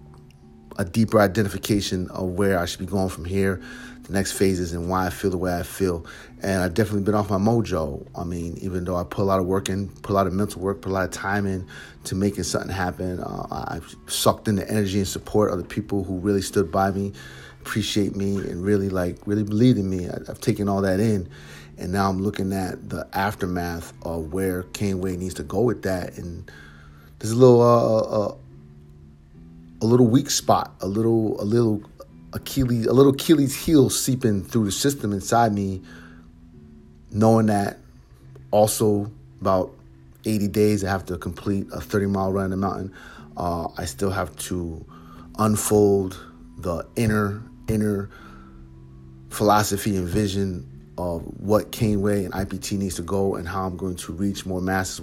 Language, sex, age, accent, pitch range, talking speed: English, male, 30-49, American, 85-105 Hz, 185 wpm